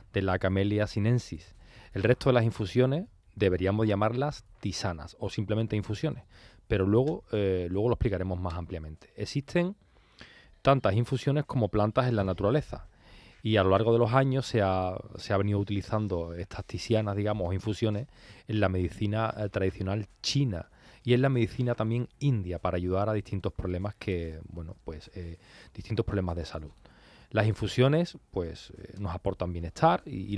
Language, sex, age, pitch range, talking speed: Spanish, male, 30-49, 95-115 Hz, 160 wpm